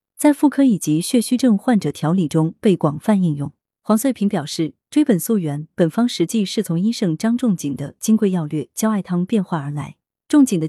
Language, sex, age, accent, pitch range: Chinese, female, 30-49, native, 160-225 Hz